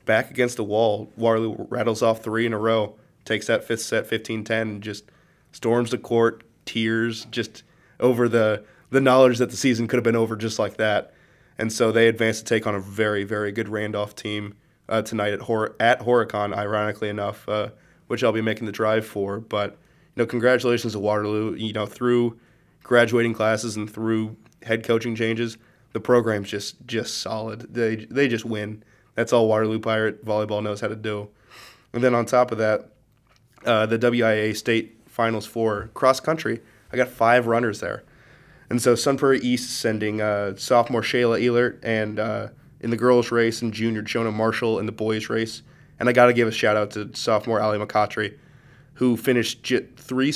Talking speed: 190 wpm